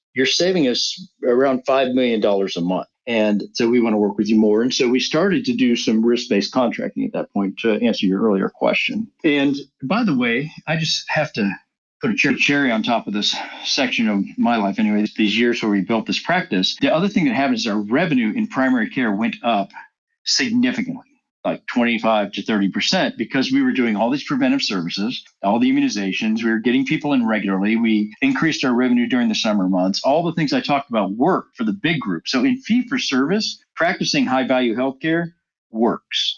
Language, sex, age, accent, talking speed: English, male, 50-69, American, 200 wpm